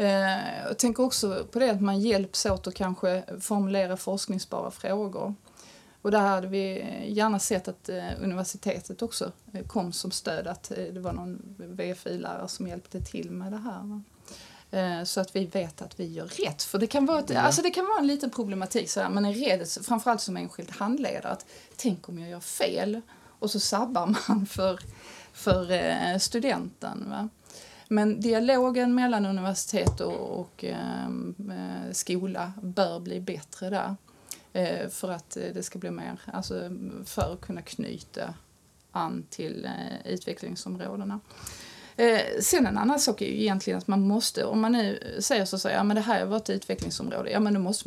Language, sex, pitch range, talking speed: Swedish, female, 185-220 Hz, 175 wpm